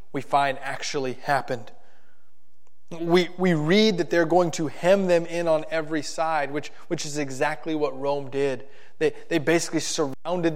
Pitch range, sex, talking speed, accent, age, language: 140-175 Hz, male, 160 wpm, American, 30-49, English